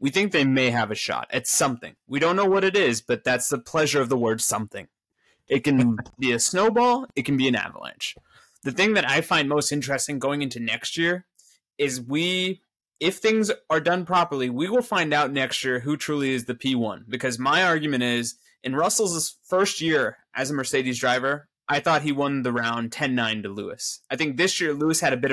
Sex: male